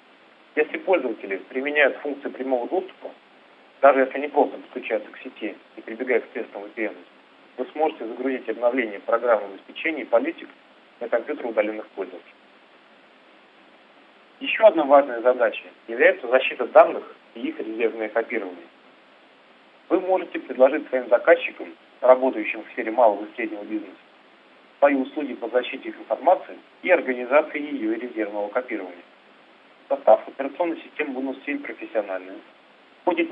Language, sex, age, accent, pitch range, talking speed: Russian, male, 40-59, native, 130-175 Hz, 130 wpm